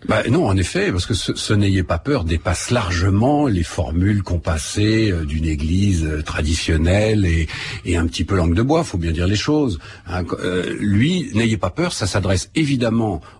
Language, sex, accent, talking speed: French, male, French, 195 wpm